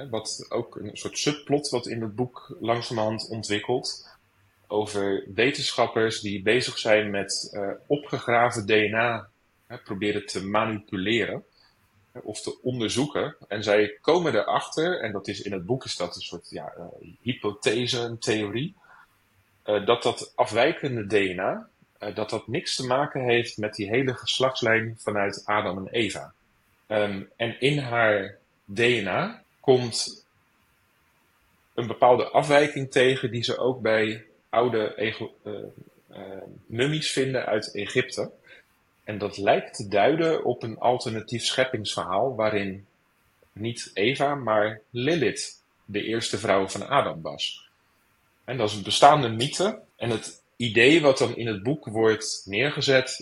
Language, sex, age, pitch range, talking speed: Dutch, male, 30-49, 105-125 Hz, 140 wpm